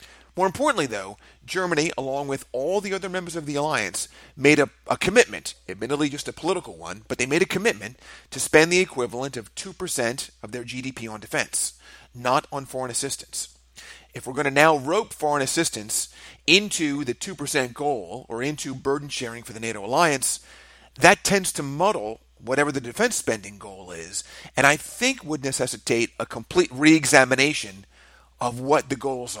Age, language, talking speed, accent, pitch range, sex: 30-49, English, 170 wpm, American, 110-155 Hz, male